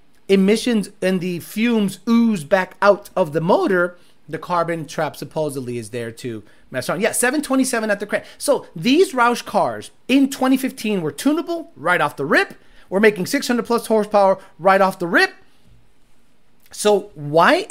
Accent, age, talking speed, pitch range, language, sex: American, 30-49, 160 wpm, 170-230 Hz, English, male